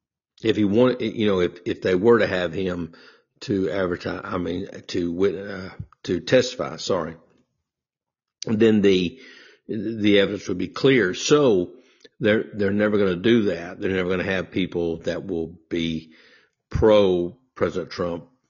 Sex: male